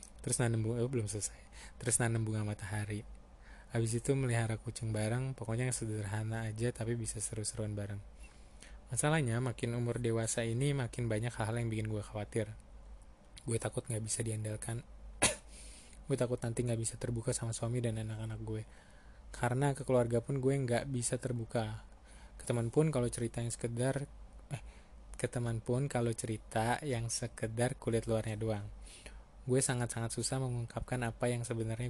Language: Indonesian